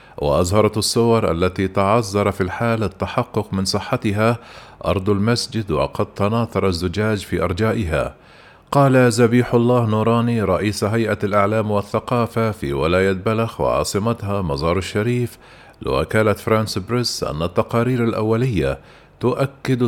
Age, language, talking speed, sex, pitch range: 40-59, Arabic, 110 wpm, male, 95-115 Hz